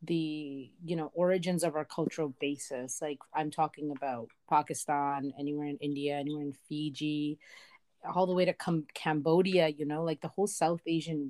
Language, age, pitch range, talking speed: English, 30-49, 150-180 Hz, 165 wpm